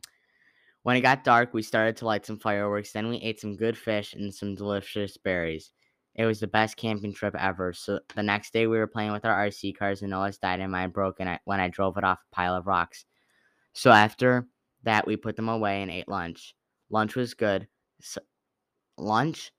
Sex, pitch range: female, 95-110 Hz